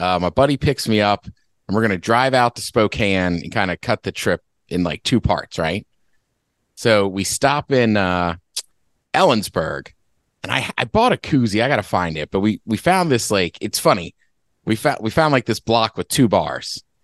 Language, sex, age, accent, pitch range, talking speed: English, male, 30-49, American, 95-135 Hz, 210 wpm